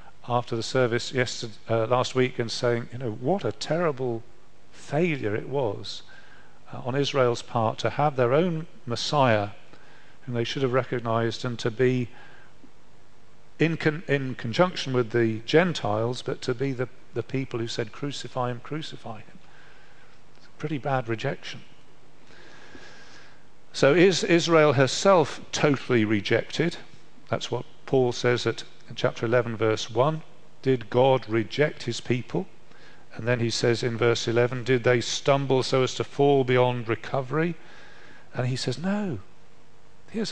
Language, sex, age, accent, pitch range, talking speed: English, male, 50-69, British, 120-145 Hz, 150 wpm